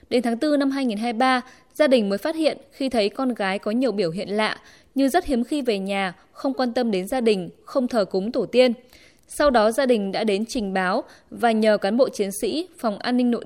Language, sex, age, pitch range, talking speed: Vietnamese, female, 20-39, 210-265 Hz, 240 wpm